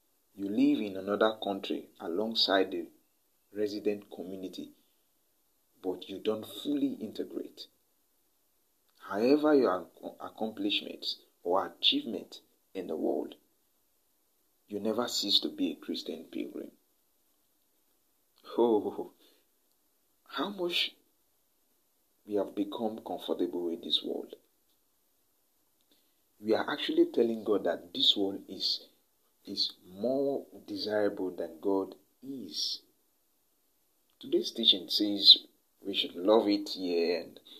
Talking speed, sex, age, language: 95 wpm, male, 50-69, English